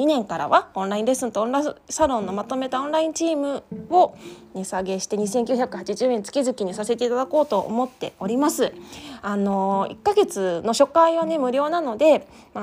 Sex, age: female, 20-39